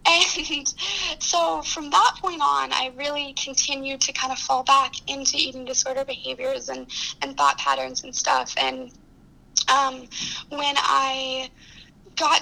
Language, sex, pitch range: English, female, 245-275 Hz